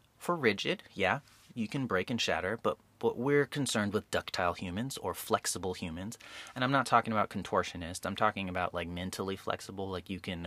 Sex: male